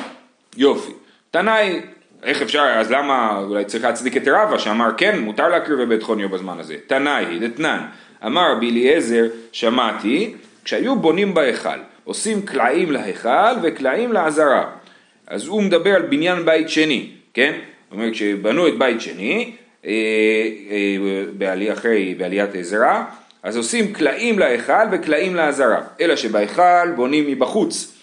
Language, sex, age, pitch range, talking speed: Hebrew, male, 40-59, 110-175 Hz, 125 wpm